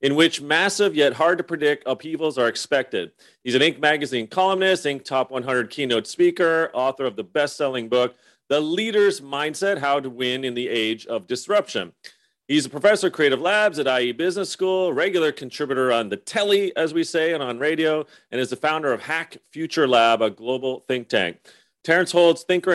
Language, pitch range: English, 125-180 Hz